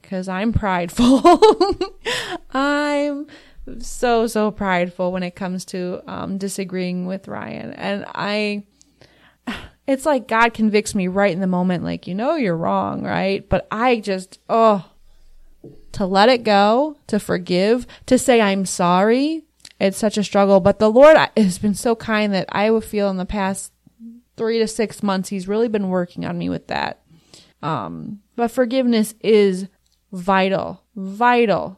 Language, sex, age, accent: English, female, 20-39, American